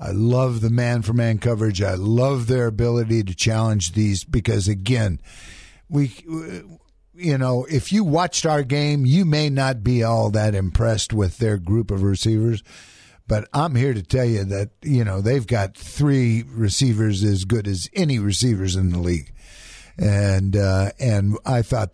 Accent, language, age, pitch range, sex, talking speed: American, English, 50-69, 110-135 Hz, male, 165 wpm